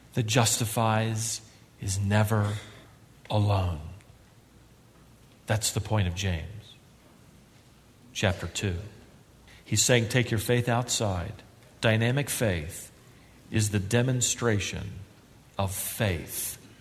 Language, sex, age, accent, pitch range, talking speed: English, male, 40-59, American, 110-135 Hz, 90 wpm